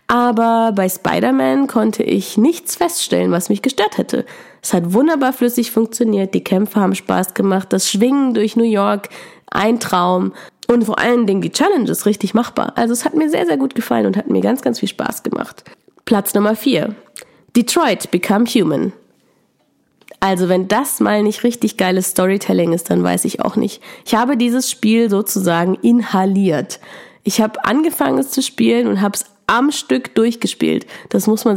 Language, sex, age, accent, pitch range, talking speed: German, female, 20-39, German, 195-245 Hz, 175 wpm